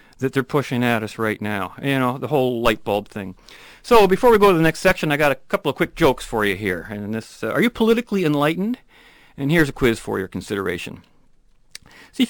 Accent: American